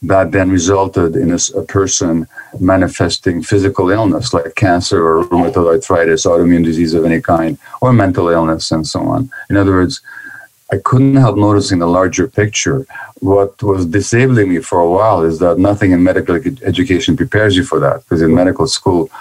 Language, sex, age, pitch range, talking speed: English, male, 50-69, 85-100 Hz, 175 wpm